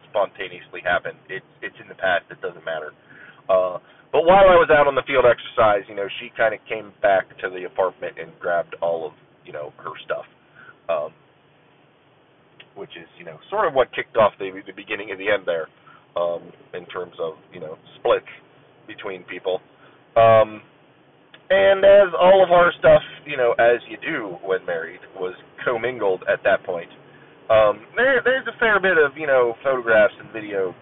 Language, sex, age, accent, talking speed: English, male, 30-49, American, 185 wpm